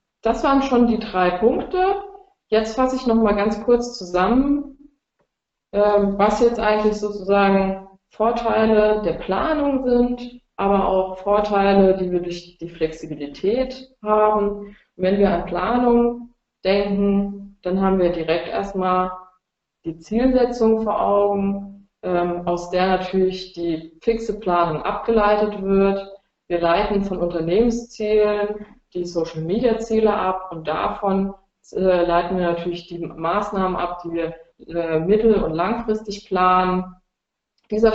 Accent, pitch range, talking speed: German, 180-220 Hz, 120 wpm